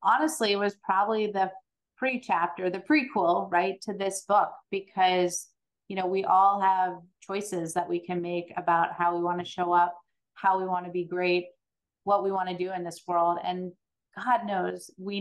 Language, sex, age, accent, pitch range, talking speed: English, female, 30-49, American, 175-195 Hz, 195 wpm